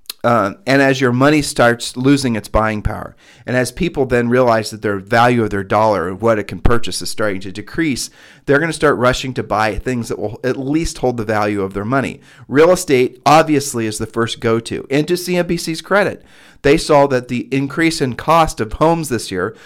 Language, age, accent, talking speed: English, 40-59, American, 215 wpm